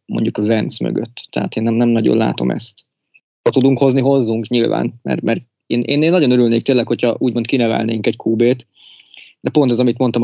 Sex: male